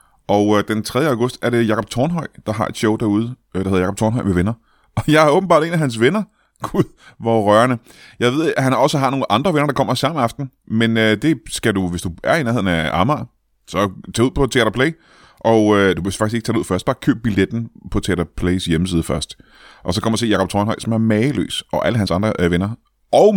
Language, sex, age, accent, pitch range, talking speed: Danish, male, 30-49, native, 105-145 Hz, 235 wpm